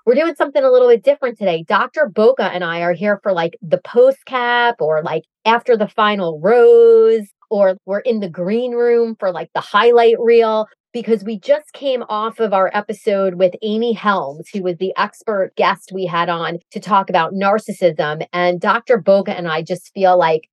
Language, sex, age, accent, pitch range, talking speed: English, female, 30-49, American, 185-240 Hz, 195 wpm